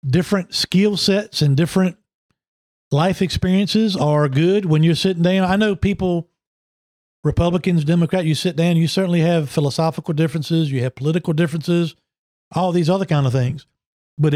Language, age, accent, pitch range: English, 50-69, American, 155-185 Hz